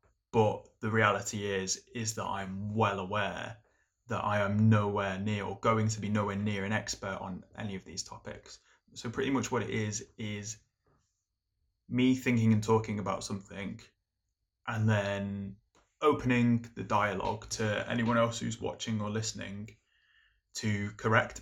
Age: 20-39